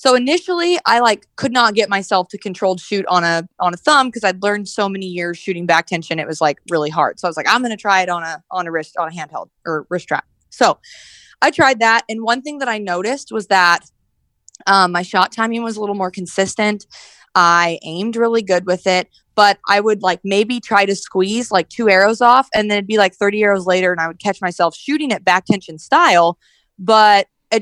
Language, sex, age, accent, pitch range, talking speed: English, female, 20-39, American, 185-230 Hz, 235 wpm